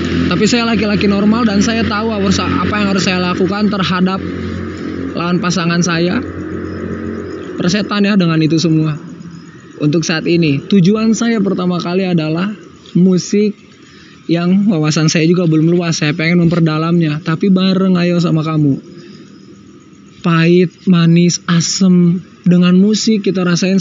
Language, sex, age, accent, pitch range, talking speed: Indonesian, male, 20-39, native, 175-205 Hz, 130 wpm